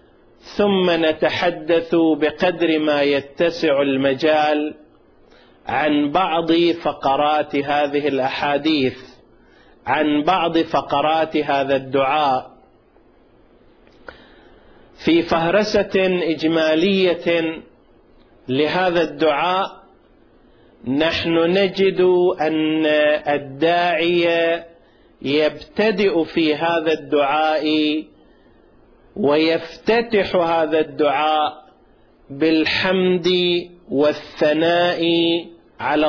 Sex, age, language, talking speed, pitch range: male, 40-59, Arabic, 60 wpm, 150-175 Hz